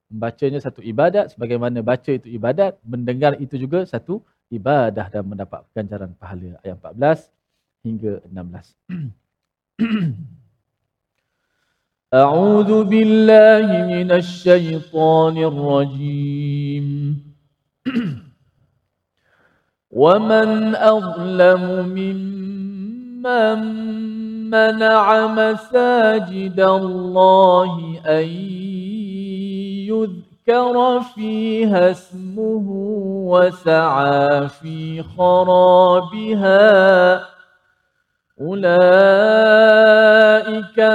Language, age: Malayalam, 40-59